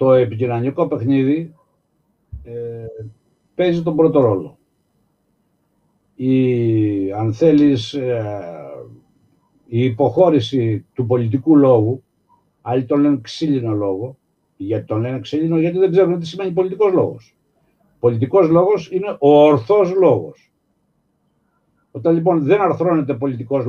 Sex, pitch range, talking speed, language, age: male, 120-165 Hz, 110 wpm, Greek, 60-79